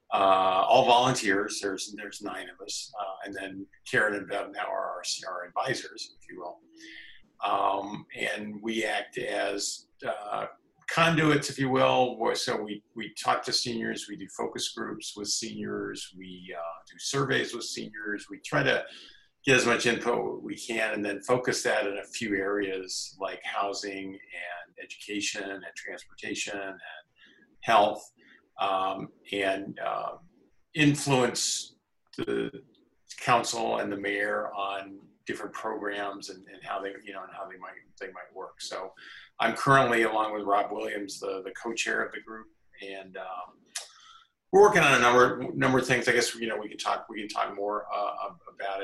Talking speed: 170 wpm